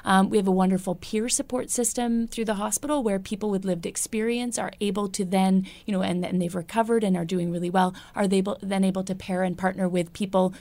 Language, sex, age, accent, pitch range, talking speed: English, female, 30-49, American, 185-215 Hz, 240 wpm